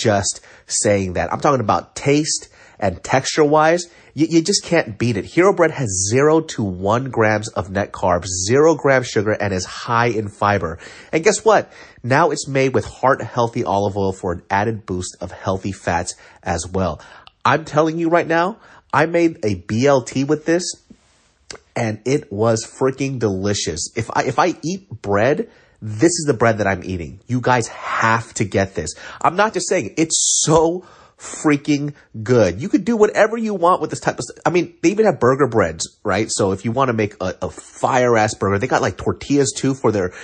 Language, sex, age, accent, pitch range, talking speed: English, male, 30-49, American, 105-150 Hz, 200 wpm